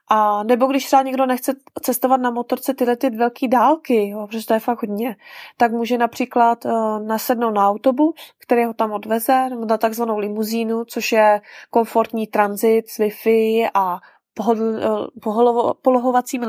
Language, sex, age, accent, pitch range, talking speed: Czech, female, 20-39, native, 220-250 Hz, 155 wpm